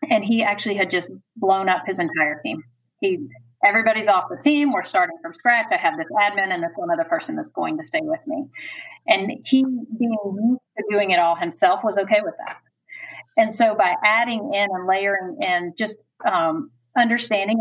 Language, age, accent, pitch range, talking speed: English, 40-59, American, 185-250 Hz, 195 wpm